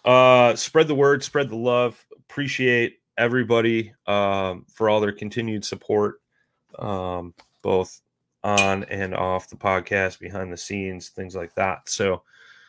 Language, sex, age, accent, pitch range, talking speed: English, male, 30-49, American, 100-130 Hz, 135 wpm